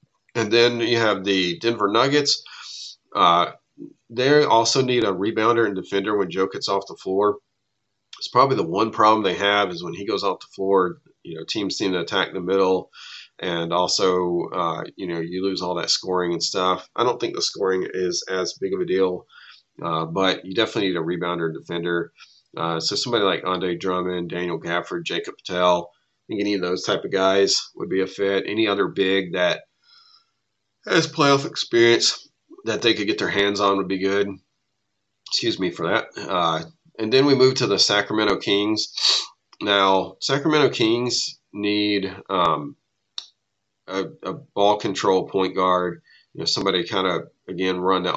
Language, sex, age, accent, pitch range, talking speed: English, male, 30-49, American, 90-110 Hz, 185 wpm